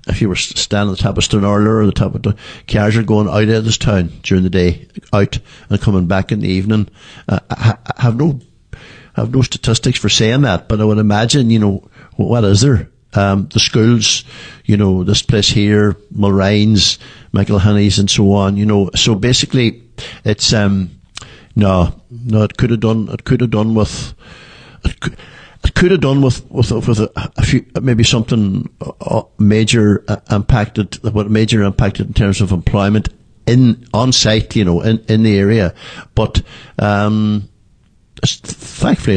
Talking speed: 170 wpm